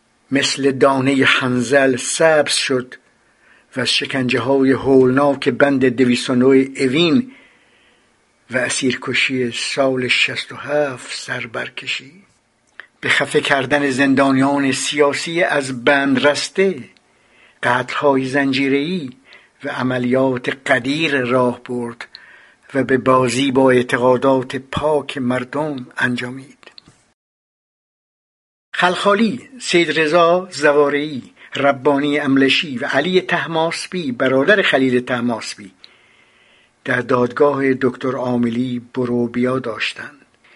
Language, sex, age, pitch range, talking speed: Persian, male, 60-79, 130-150 Hz, 90 wpm